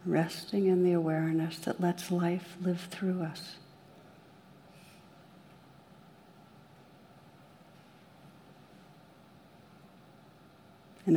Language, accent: English, American